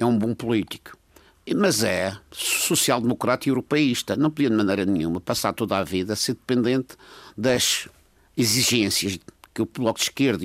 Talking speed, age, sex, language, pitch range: 160 wpm, 50-69, male, Portuguese, 110-155 Hz